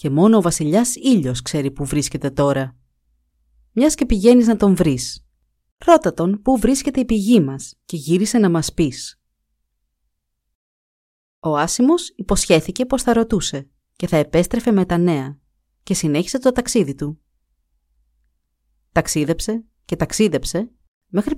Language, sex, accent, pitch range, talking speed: Greek, female, native, 135-215 Hz, 135 wpm